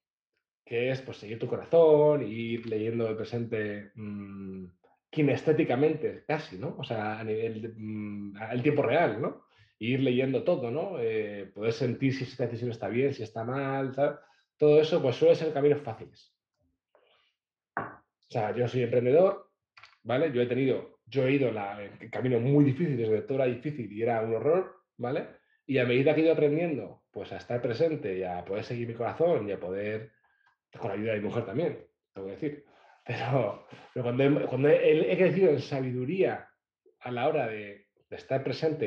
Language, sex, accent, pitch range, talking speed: Spanish, male, Spanish, 110-145 Hz, 185 wpm